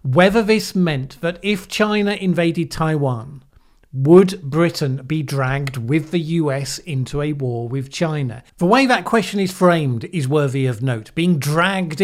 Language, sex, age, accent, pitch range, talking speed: English, male, 50-69, British, 140-185 Hz, 160 wpm